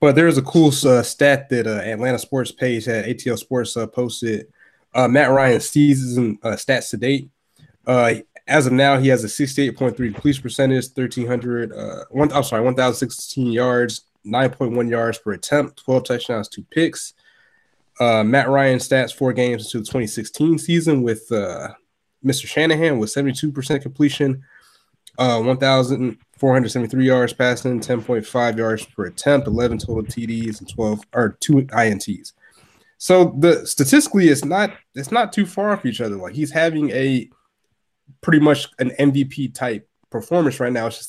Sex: male